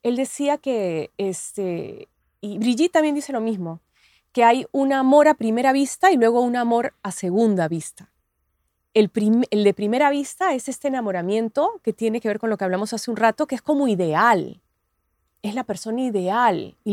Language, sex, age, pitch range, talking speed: Spanish, female, 30-49, 190-260 Hz, 190 wpm